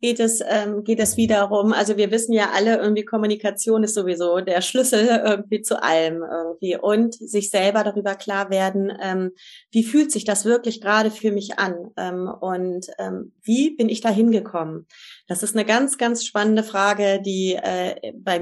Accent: German